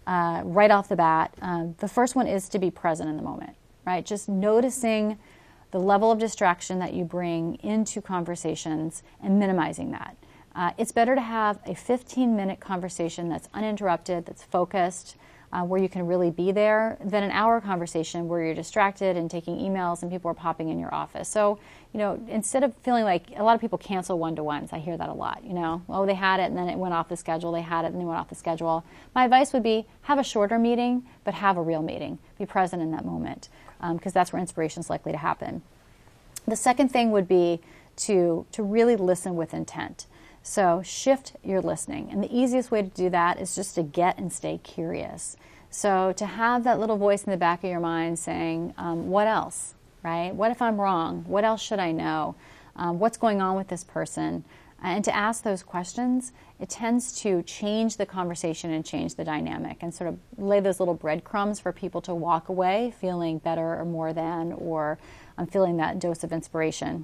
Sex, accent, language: female, American, English